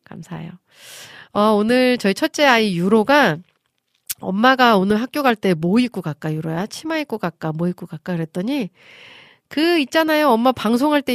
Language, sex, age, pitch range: Korean, female, 40-59, 175-250 Hz